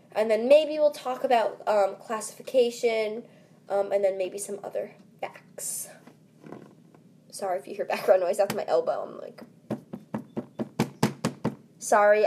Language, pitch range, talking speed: English, 215-290 Hz, 130 wpm